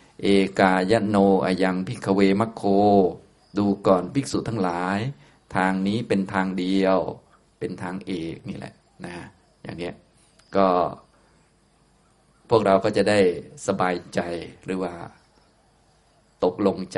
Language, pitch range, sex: Thai, 90-100 Hz, male